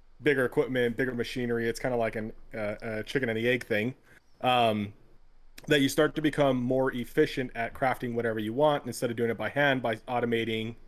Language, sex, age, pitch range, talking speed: English, male, 30-49, 115-130 Hz, 200 wpm